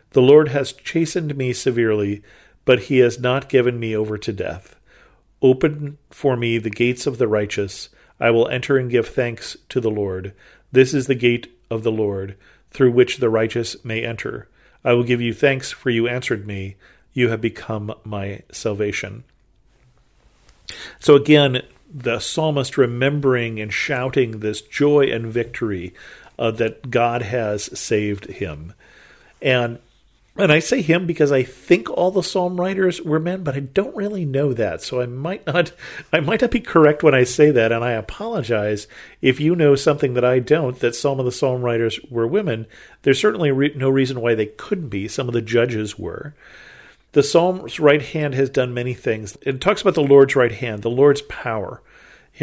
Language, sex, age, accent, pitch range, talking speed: English, male, 40-59, American, 115-145 Hz, 185 wpm